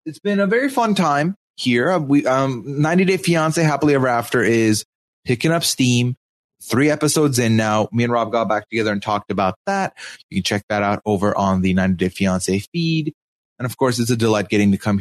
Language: English